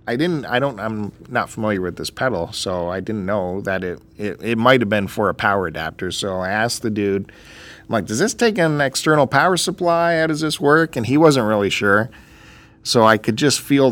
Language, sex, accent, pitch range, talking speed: English, male, American, 100-130 Hz, 230 wpm